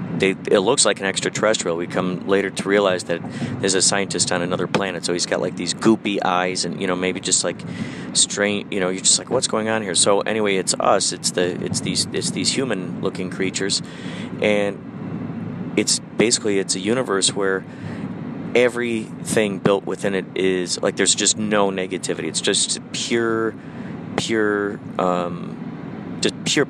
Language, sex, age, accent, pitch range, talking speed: English, male, 30-49, American, 90-105 Hz, 175 wpm